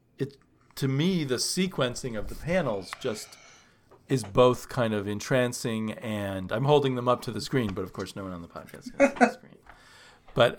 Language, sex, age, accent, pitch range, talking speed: English, male, 40-59, American, 100-130 Hz, 195 wpm